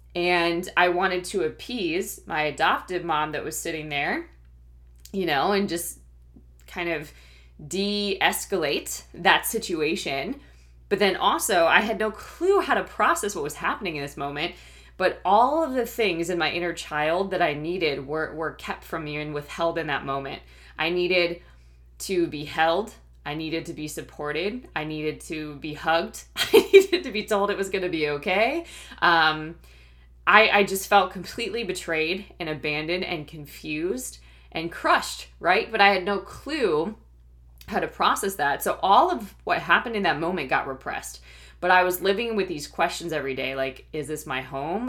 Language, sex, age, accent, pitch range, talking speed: English, female, 20-39, American, 140-195 Hz, 175 wpm